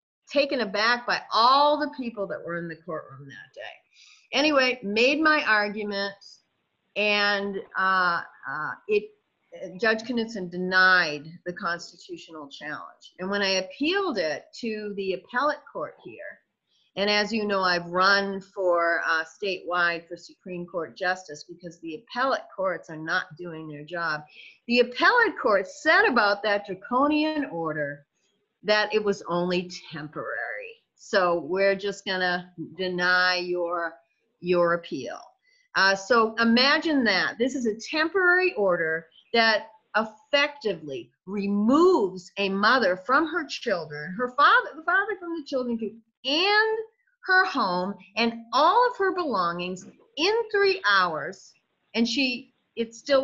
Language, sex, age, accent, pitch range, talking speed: English, female, 40-59, American, 180-280 Hz, 135 wpm